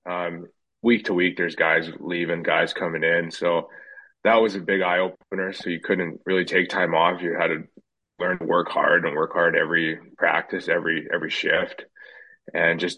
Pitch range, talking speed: 85-100 Hz, 185 wpm